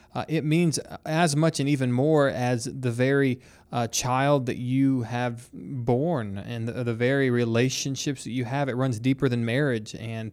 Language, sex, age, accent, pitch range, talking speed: English, male, 20-39, American, 115-140 Hz, 180 wpm